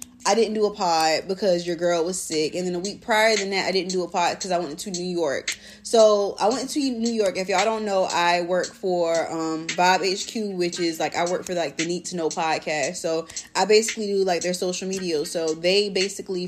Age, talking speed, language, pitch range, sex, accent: 20-39, 245 wpm, English, 175-205 Hz, female, American